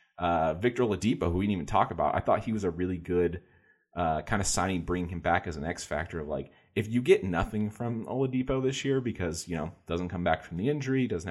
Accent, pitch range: American, 85-110 Hz